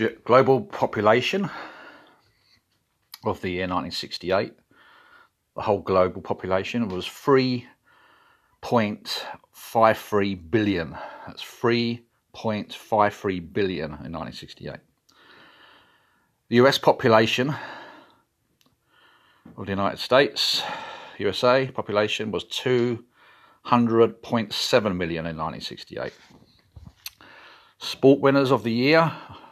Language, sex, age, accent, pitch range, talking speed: English, male, 40-59, British, 95-125 Hz, 75 wpm